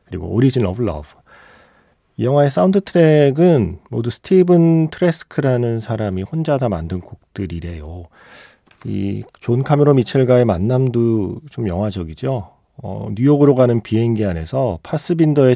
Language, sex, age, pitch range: Korean, male, 40-59, 95-145 Hz